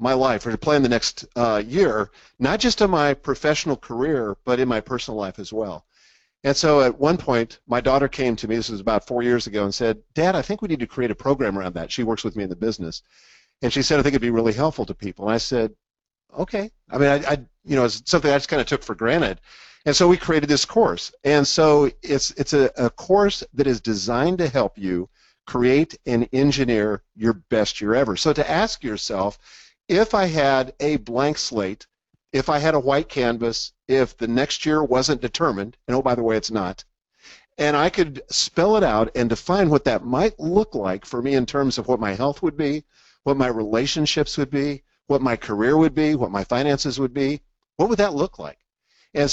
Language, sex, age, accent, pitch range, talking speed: English, male, 50-69, American, 115-150 Hz, 225 wpm